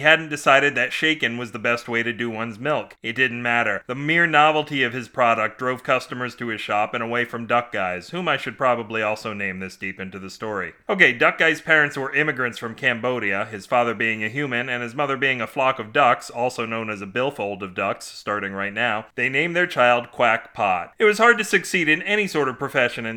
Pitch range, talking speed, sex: 120-155 Hz, 235 wpm, male